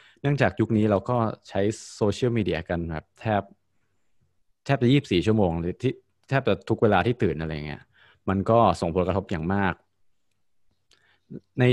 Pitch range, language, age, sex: 95-115 Hz, Thai, 20-39, male